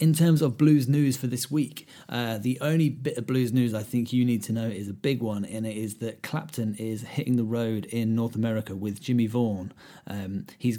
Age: 30-49